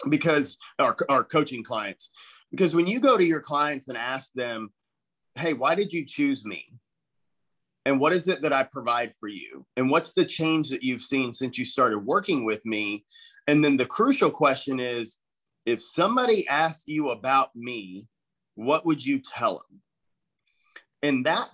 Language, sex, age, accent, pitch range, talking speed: English, male, 30-49, American, 125-165 Hz, 175 wpm